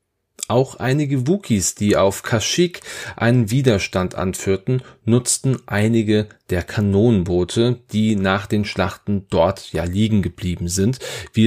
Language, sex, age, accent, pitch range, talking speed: German, male, 40-59, German, 95-125 Hz, 120 wpm